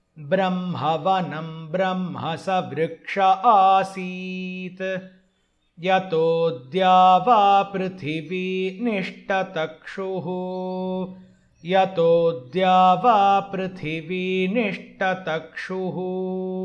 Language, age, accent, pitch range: Hindi, 50-69, native, 165-190 Hz